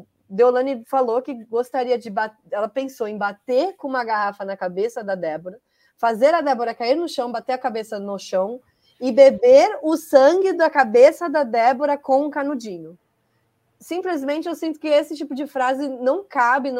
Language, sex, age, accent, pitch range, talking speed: Portuguese, female, 20-39, Brazilian, 210-270 Hz, 180 wpm